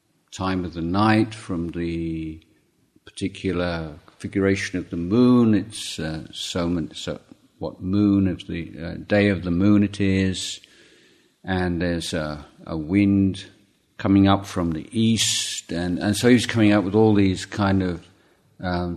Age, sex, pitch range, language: 50-69, male, 90-110 Hz, Thai